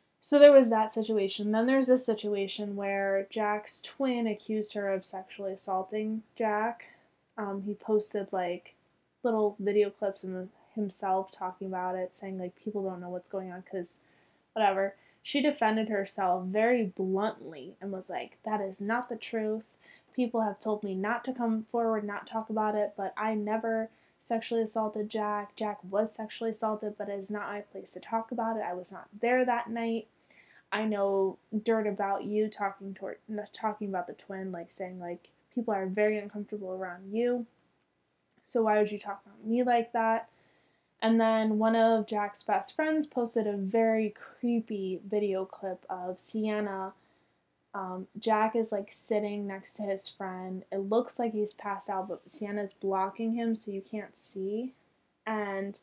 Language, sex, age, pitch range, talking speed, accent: English, female, 20-39, 195-225 Hz, 170 wpm, American